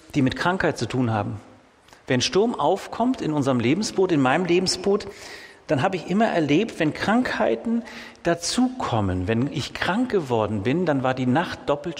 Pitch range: 125-185 Hz